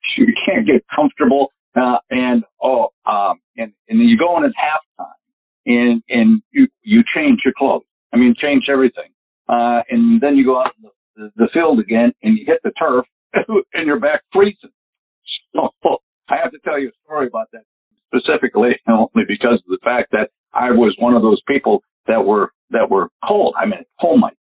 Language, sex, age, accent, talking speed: English, male, 60-79, American, 195 wpm